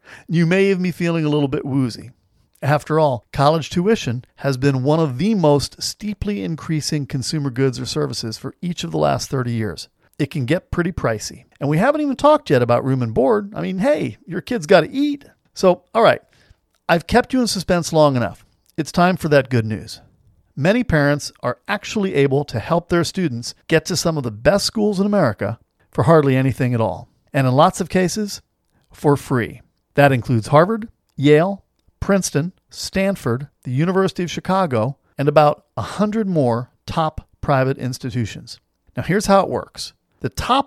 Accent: American